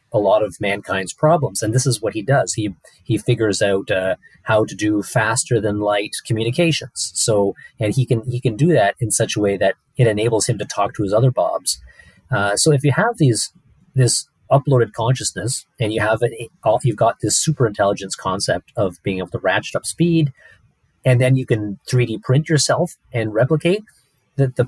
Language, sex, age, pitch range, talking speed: English, male, 30-49, 105-130 Hz, 200 wpm